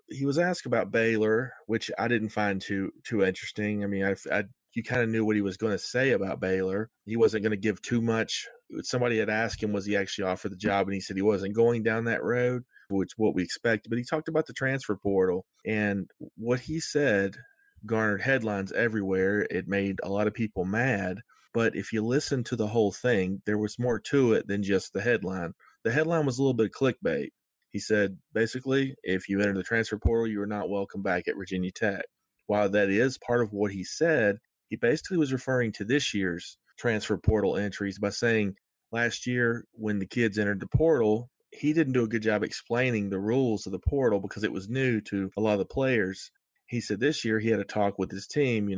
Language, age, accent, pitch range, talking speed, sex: English, 30-49, American, 100-120 Hz, 230 wpm, male